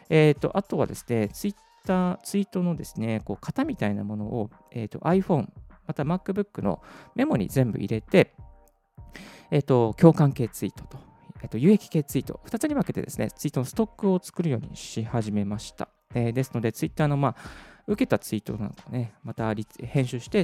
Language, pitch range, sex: Japanese, 115-170 Hz, male